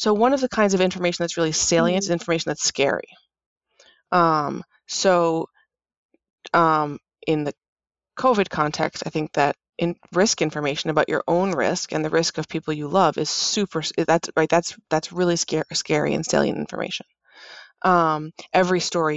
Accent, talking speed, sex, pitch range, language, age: American, 165 wpm, female, 155-195 Hz, English, 20-39